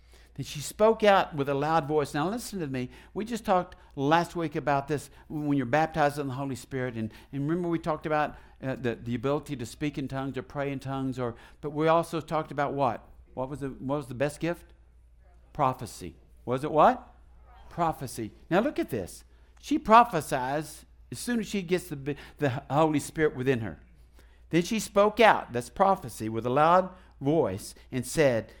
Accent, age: American, 60-79